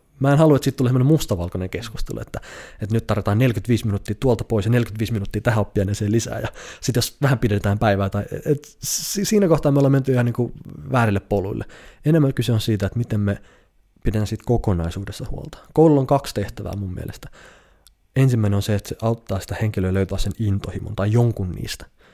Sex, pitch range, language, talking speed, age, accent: male, 100-140 Hz, Finnish, 190 wpm, 20-39, native